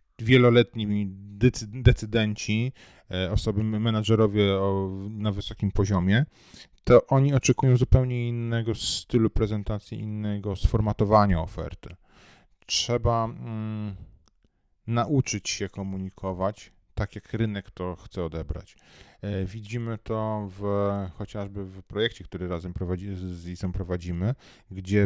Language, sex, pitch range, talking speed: Polish, male, 100-120 Hz, 100 wpm